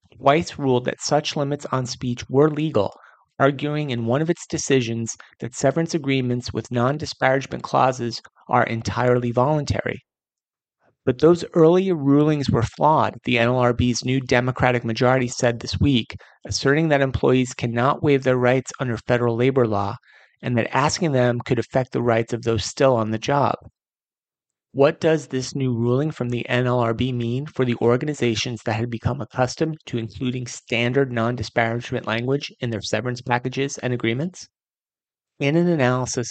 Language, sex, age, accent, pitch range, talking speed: English, male, 30-49, American, 120-140 Hz, 155 wpm